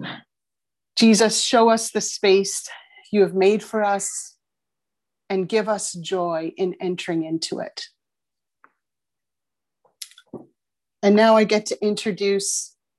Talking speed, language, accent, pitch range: 110 wpm, English, American, 180-215 Hz